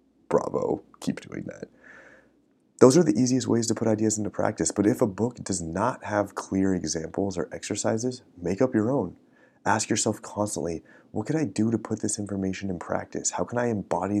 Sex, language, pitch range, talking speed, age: male, English, 90-110 Hz, 195 wpm, 30-49